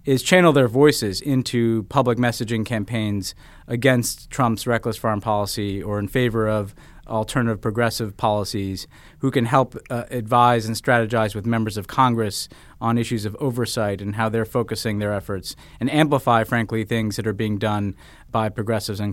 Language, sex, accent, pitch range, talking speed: English, male, American, 110-130 Hz, 165 wpm